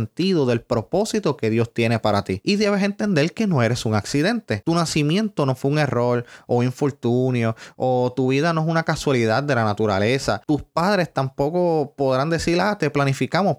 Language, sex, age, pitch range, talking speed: Spanish, male, 20-39, 115-170 Hz, 180 wpm